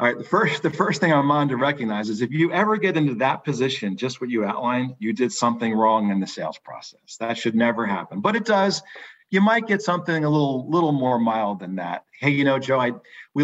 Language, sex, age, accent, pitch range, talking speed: English, male, 40-59, American, 110-155 Hz, 245 wpm